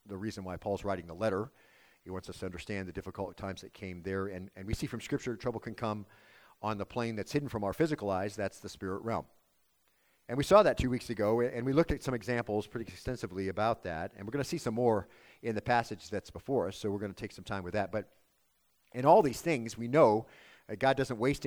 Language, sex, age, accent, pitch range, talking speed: English, male, 50-69, American, 100-125 Hz, 250 wpm